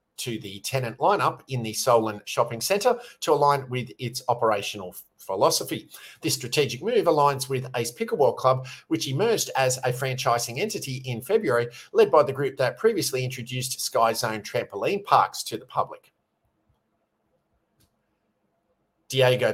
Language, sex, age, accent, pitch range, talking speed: English, male, 50-69, Australian, 120-160 Hz, 140 wpm